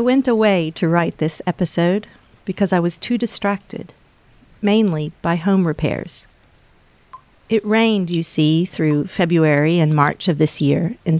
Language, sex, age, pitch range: English, female, 40-59, 160-205 Hz